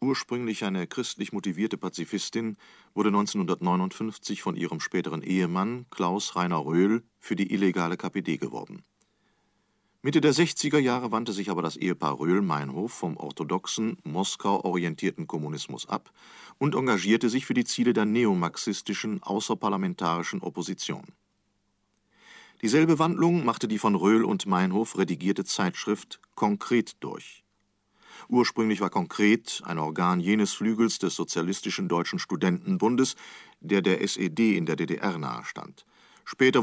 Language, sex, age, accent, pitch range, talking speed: German, male, 40-59, German, 95-120 Hz, 125 wpm